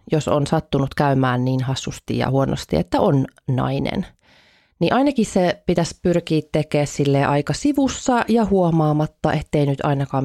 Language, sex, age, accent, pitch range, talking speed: Finnish, female, 30-49, native, 145-205 Hz, 145 wpm